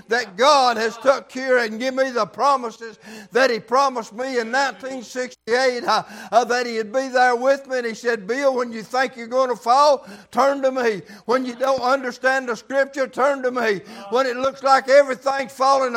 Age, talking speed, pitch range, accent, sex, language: 60-79, 205 wpm, 245-275 Hz, American, male, English